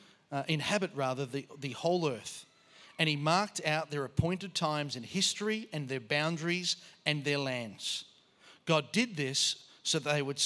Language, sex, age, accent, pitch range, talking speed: English, male, 40-59, Australian, 140-175 Hz, 165 wpm